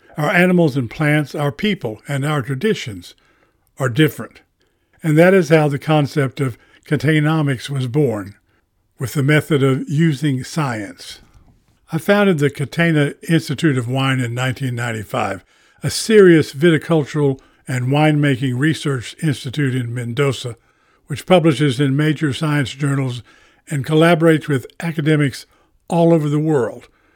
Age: 60-79